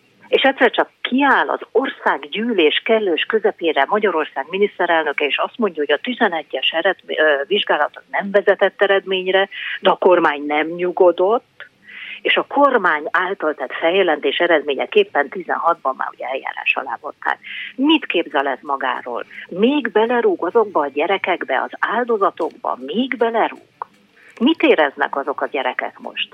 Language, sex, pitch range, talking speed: Hungarian, female, 155-215 Hz, 130 wpm